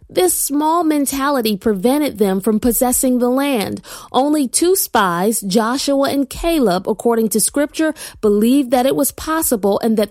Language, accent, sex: English, American, female